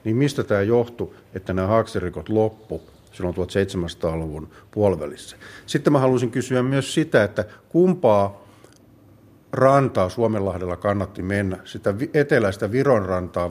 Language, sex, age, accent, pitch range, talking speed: Finnish, male, 50-69, native, 95-120 Hz, 115 wpm